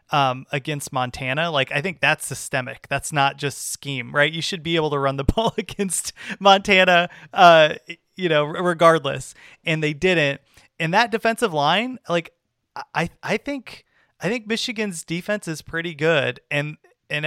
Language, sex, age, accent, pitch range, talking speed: English, male, 30-49, American, 140-185 Hz, 165 wpm